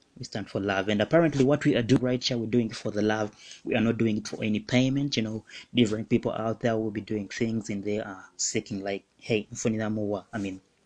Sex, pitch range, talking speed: male, 105-130 Hz, 245 wpm